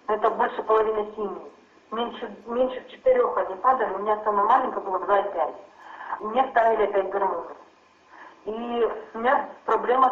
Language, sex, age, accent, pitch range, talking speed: Russian, female, 40-59, native, 195-255 Hz, 140 wpm